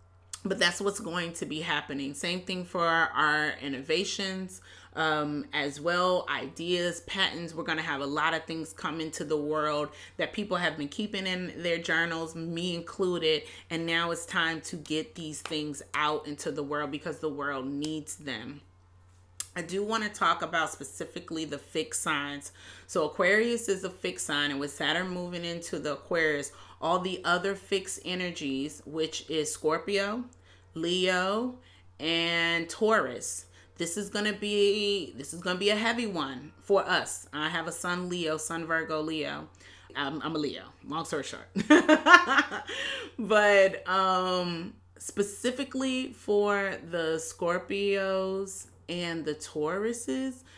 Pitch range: 150-190 Hz